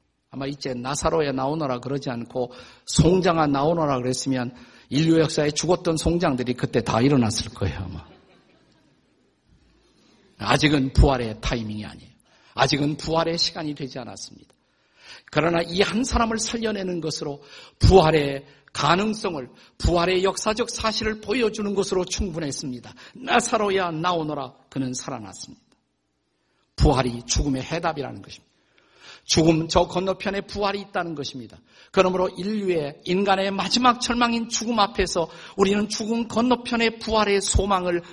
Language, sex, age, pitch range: Korean, male, 50-69, 135-200 Hz